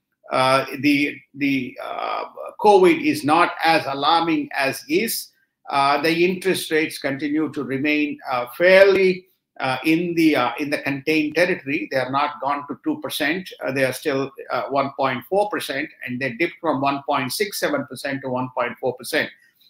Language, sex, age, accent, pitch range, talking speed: English, male, 50-69, Indian, 135-180 Hz, 175 wpm